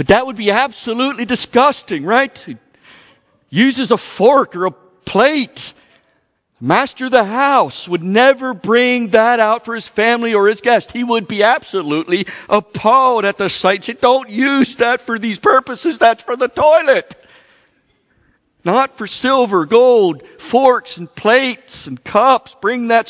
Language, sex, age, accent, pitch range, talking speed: English, male, 50-69, American, 150-230 Hz, 150 wpm